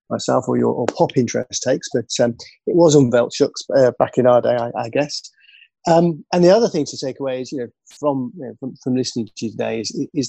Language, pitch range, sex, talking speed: English, 115-130 Hz, male, 250 wpm